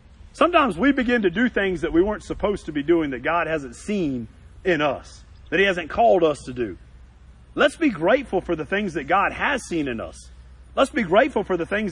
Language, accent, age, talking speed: English, American, 40-59, 220 wpm